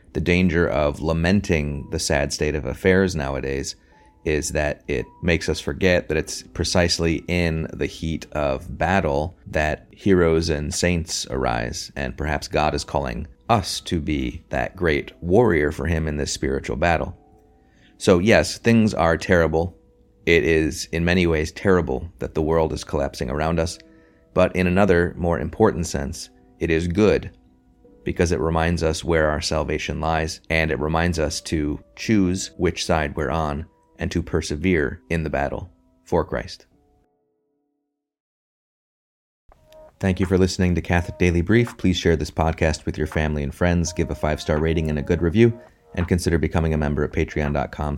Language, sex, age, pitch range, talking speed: English, male, 30-49, 75-90 Hz, 165 wpm